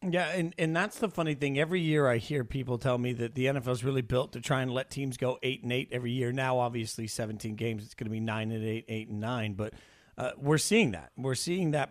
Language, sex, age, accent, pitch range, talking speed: English, male, 40-59, American, 130-160 Hz, 265 wpm